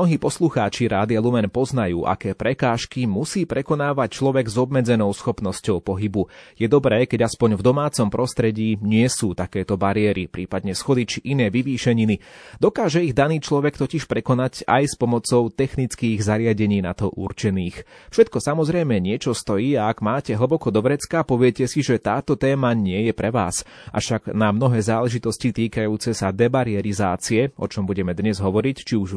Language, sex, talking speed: Slovak, male, 160 wpm